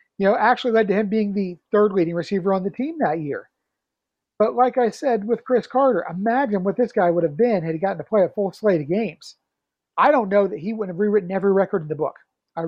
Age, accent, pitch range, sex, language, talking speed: 50-69, American, 175-230 Hz, male, English, 255 wpm